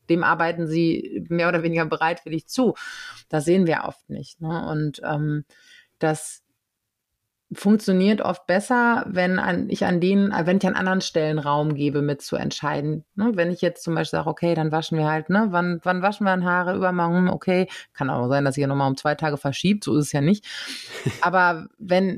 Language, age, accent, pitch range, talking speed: German, 30-49, German, 155-185 Hz, 205 wpm